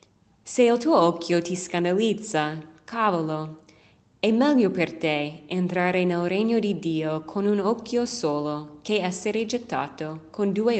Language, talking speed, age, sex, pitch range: Italian, 140 wpm, 20-39, female, 155-210 Hz